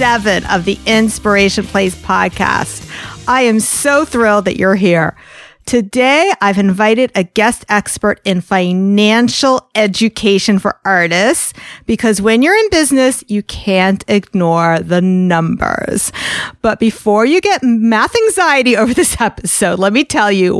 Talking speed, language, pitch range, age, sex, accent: 135 wpm, English, 205-260 Hz, 40-59, female, American